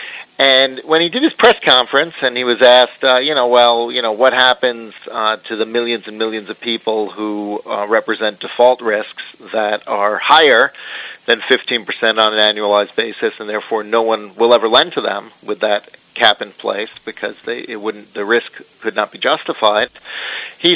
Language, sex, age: English, male, 40-59